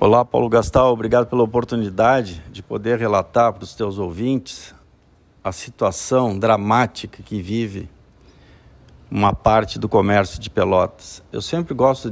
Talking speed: 135 wpm